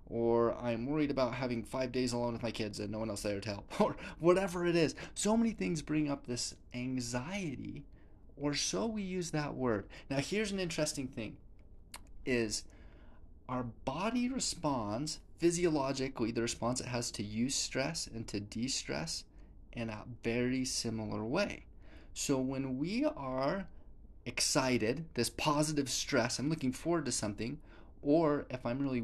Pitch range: 105-145 Hz